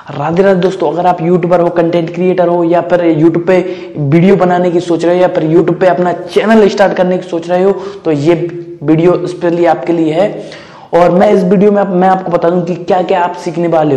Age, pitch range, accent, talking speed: 20-39, 170-185 Hz, native, 230 wpm